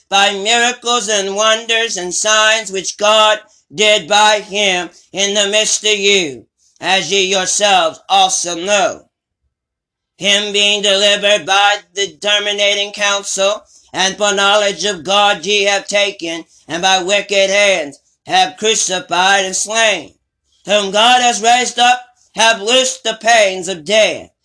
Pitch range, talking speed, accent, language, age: 195-220 Hz, 135 wpm, American, English, 40-59